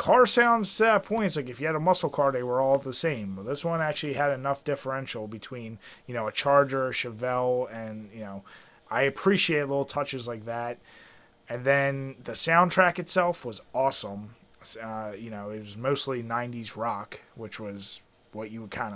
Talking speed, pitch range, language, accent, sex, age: 195 wpm, 115-145 Hz, English, American, male, 30-49